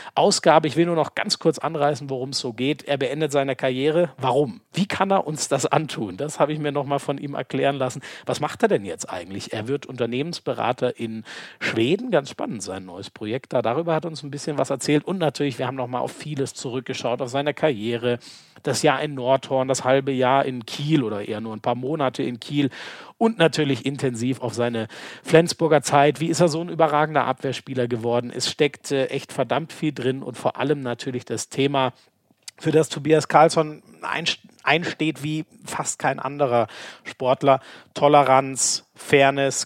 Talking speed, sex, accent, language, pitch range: 185 wpm, male, German, German, 120-150 Hz